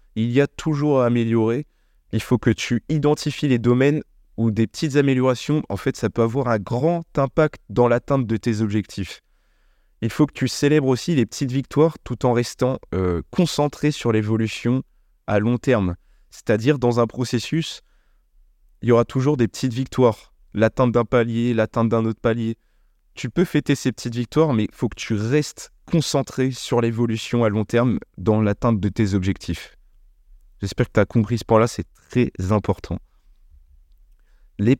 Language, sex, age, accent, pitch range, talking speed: French, male, 20-39, French, 100-130 Hz, 175 wpm